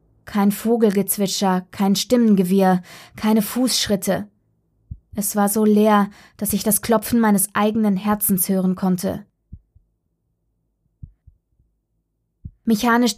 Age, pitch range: 20-39, 195-215 Hz